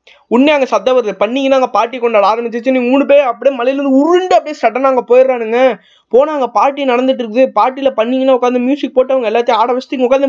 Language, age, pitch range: Tamil, 20-39, 185-260 Hz